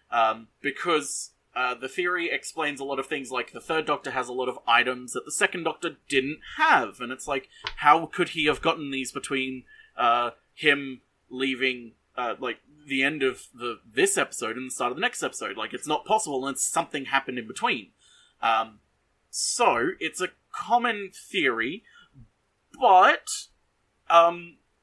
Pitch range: 130-205 Hz